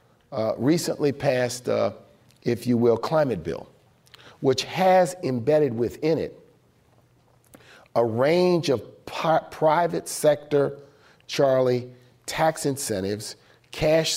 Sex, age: male, 50-69